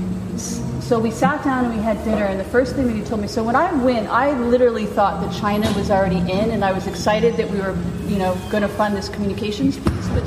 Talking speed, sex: 255 wpm, female